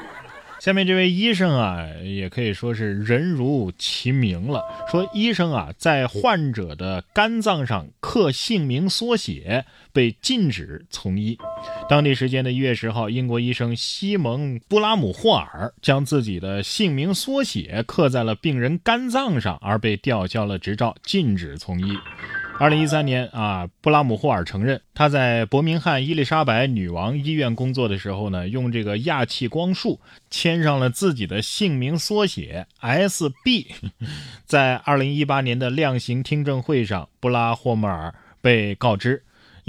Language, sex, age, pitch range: Chinese, male, 20-39, 105-150 Hz